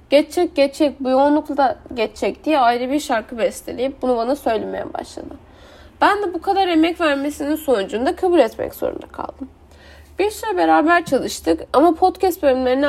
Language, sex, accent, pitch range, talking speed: Turkish, female, native, 250-320 Hz, 150 wpm